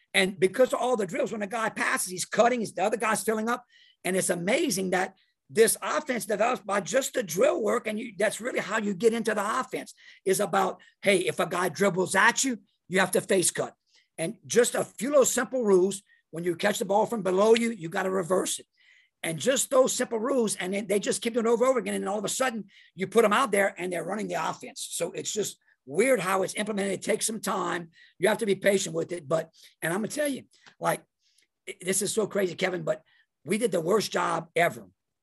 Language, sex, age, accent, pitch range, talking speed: English, male, 50-69, American, 185-235 Hz, 240 wpm